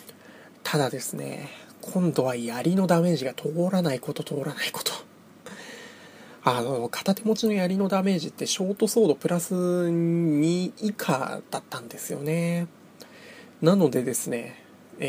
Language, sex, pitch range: Japanese, male, 140-210 Hz